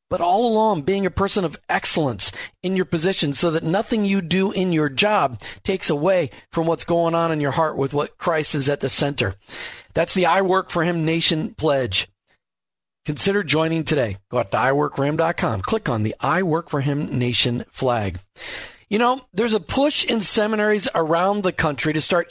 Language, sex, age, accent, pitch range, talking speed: English, male, 40-59, American, 155-200 Hz, 190 wpm